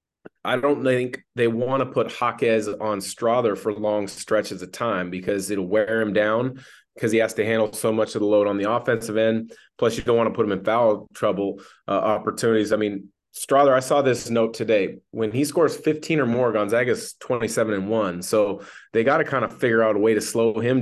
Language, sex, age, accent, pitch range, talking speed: English, male, 30-49, American, 110-130 Hz, 220 wpm